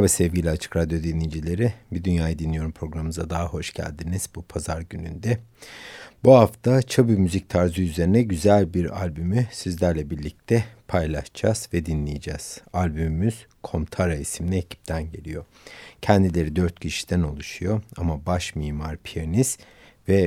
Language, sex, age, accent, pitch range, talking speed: Turkish, male, 60-79, native, 80-100 Hz, 125 wpm